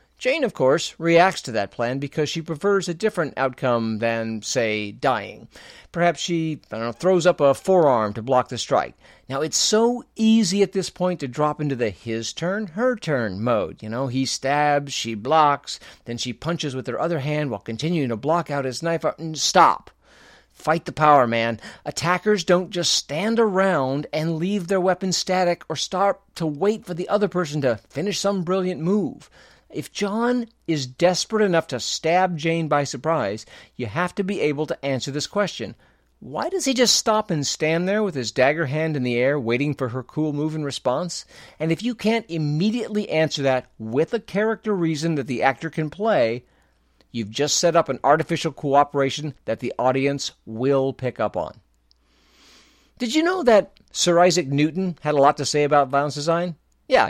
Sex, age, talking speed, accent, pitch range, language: male, 50-69, 190 wpm, American, 130-185 Hz, English